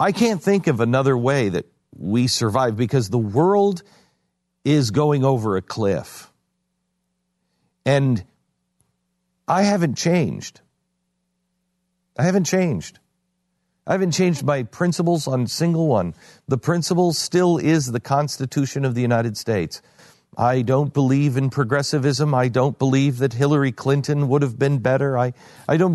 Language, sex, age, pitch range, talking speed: English, male, 50-69, 130-180 Hz, 140 wpm